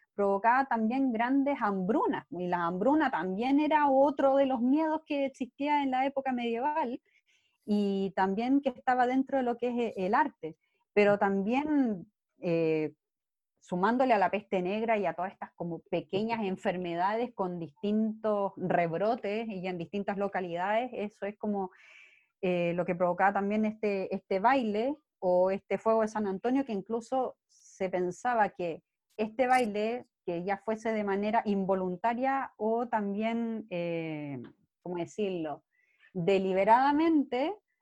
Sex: female